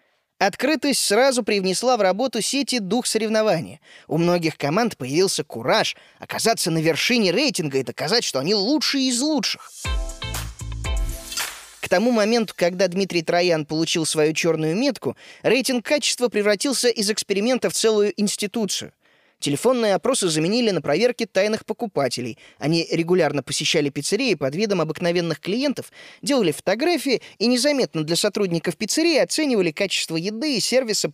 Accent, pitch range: native, 170-245 Hz